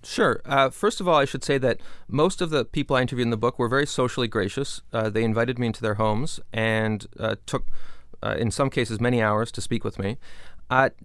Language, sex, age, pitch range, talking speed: English, male, 30-49, 115-145 Hz, 235 wpm